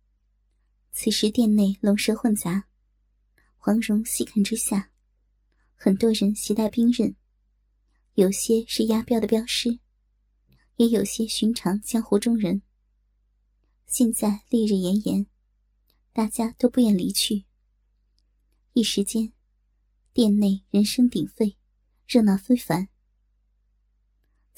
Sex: male